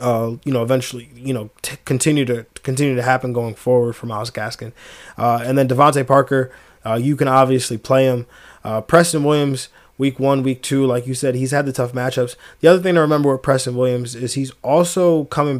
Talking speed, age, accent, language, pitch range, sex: 210 wpm, 20-39, American, English, 125-135 Hz, male